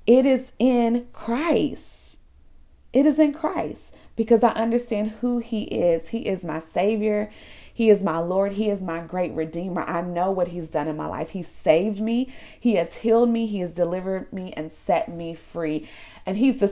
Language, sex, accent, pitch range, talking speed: English, female, American, 165-225 Hz, 190 wpm